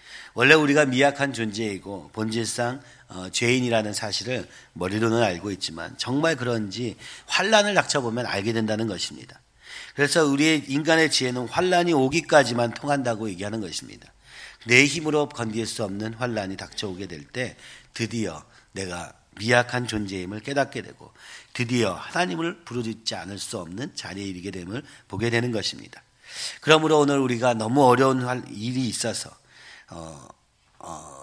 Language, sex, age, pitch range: Korean, male, 40-59, 105-135 Hz